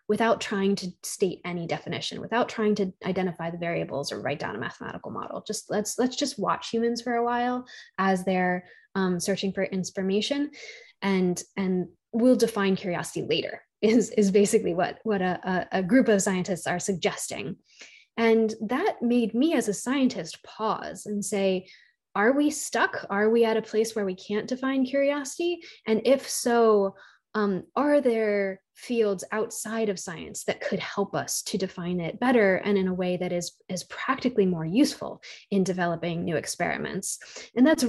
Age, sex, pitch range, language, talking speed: 20-39, female, 185-235 Hz, English, 170 wpm